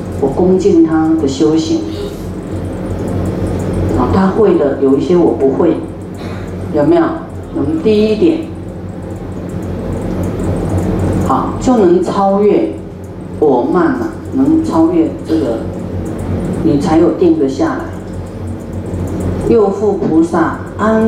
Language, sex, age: Chinese, female, 40-59